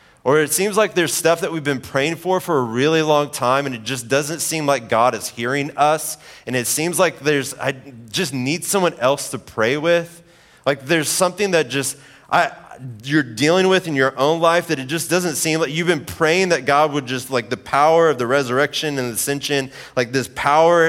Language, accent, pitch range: English, American, 125-160 Hz